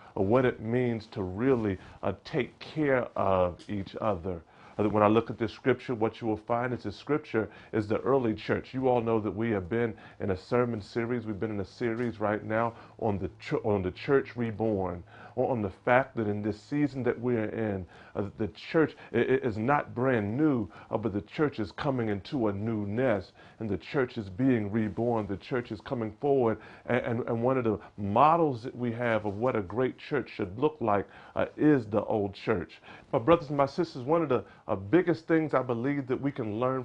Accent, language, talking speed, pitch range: American, English, 210 wpm, 105-130 Hz